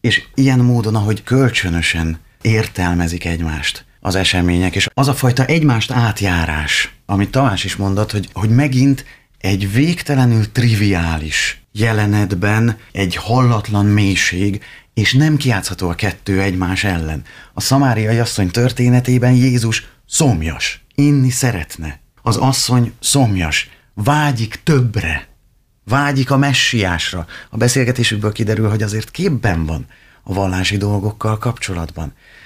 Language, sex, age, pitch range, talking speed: Hungarian, male, 30-49, 95-125 Hz, 115 wpm